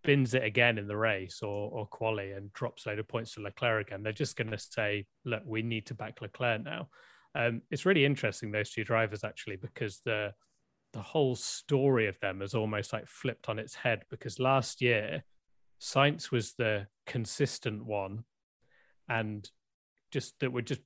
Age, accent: 30-49, British